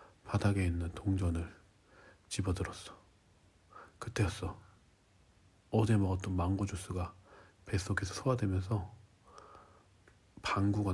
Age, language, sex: 40-59, Korean, male